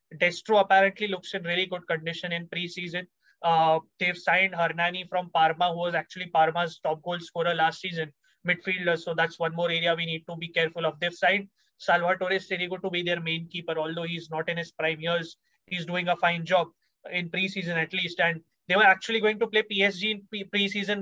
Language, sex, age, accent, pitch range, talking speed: English, male, 20-39, Indian, 170-190 Hz, 200 wpm